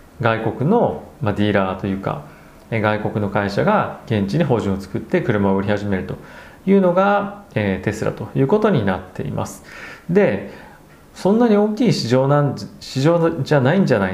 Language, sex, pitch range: Japanese, male, 100-150 Hz